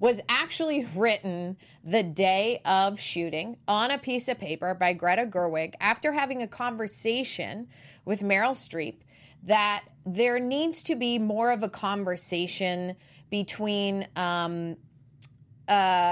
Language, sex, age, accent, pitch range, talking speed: English, female, 30-49, American, 165-220 Hz, 125 wpm